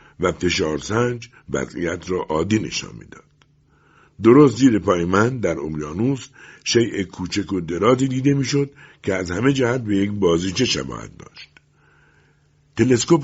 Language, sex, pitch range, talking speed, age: Persian, male, 90-135 Hz, 130 wpm, 60-79